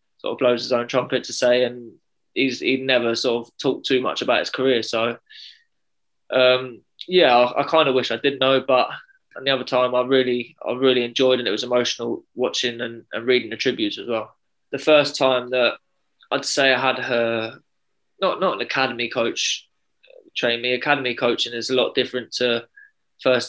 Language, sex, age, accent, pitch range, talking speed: English, male, 20-39, British, 115-130 Hz, 200 wpm